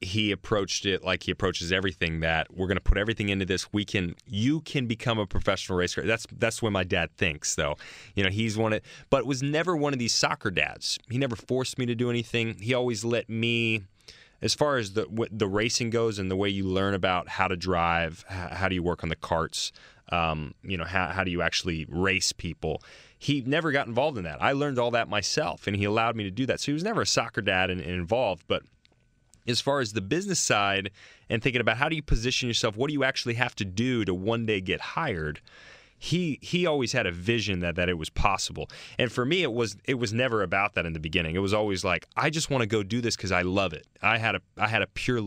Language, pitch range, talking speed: English, 90-120 Hz, 250 wpm